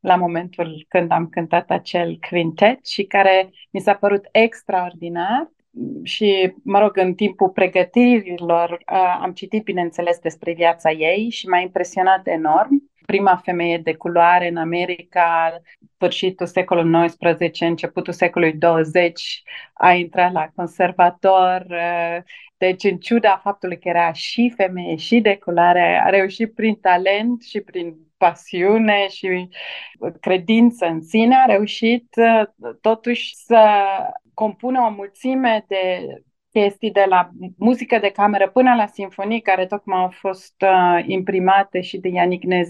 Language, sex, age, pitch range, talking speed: Romanian, female, 30-49, 175-210 Hz, 130 wpm